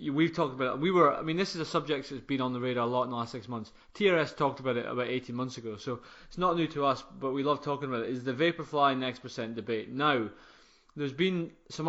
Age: 20-39